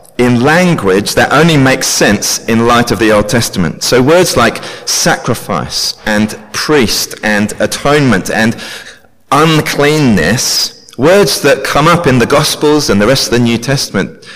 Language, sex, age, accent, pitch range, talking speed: English, male, 30-49, British, 110-145 Hz, 150 wpm